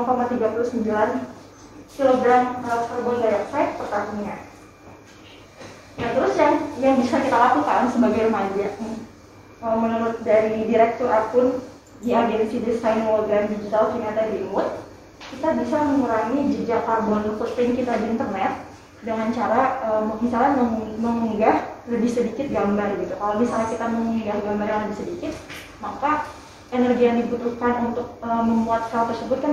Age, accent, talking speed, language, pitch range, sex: 20-39, native, 125 wpm, Indonesian, 225-250 Hz, female